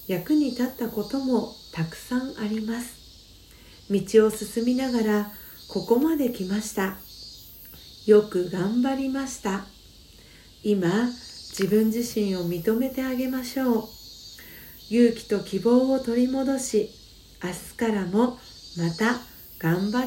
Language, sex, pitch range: Japanese, female, 195-250 Hz